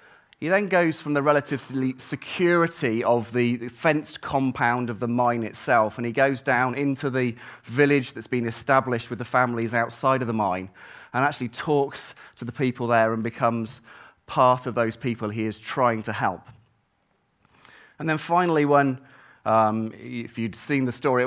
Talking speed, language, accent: 170 wpm, English, British